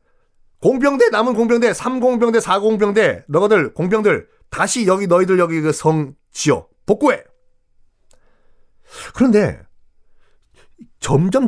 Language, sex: Korean, male